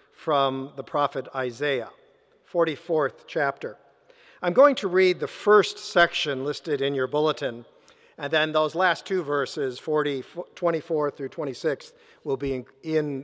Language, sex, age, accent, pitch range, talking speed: English, male, 50-69, American, 145-210 Hz, 130 wpm